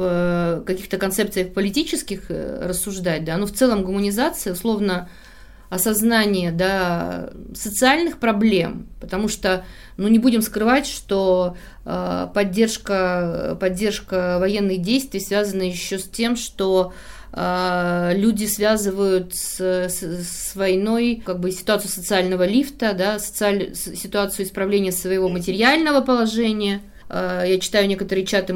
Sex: female